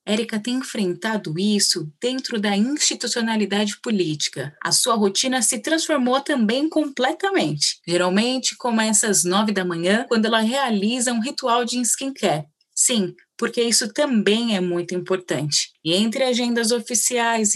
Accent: Brazilian